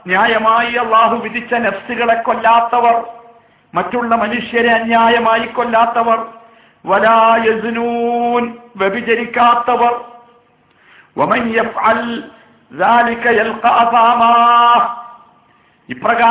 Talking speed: 105 wpm